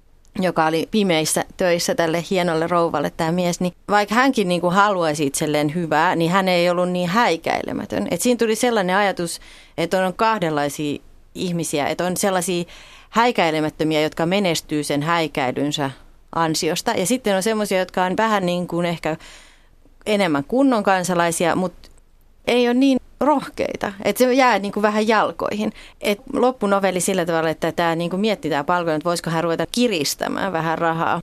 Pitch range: 165-200 Hz